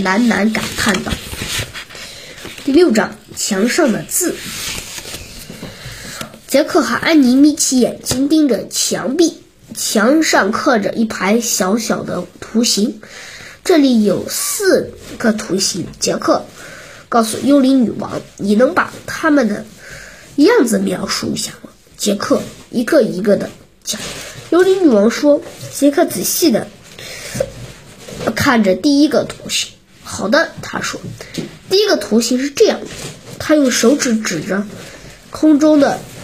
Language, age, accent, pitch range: Chinese, 20-39, native, 210-310 Hz